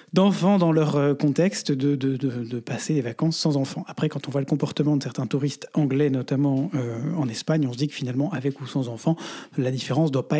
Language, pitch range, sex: French, 135-165 Hz, male